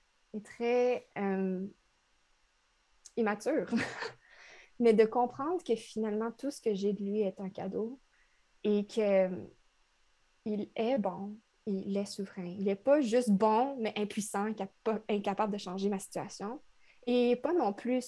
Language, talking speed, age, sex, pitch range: French, 145 wpm, 20-39, female, 195-230 Hz